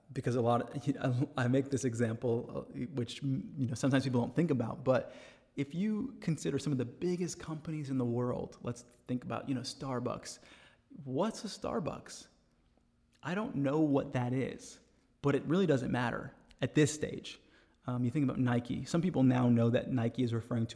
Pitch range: 120-145 Hz